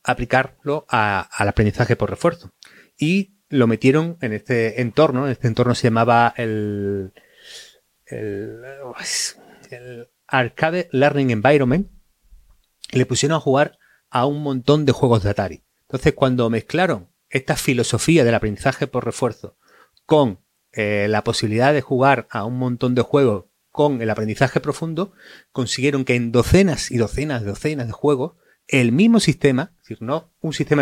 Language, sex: Spanish, male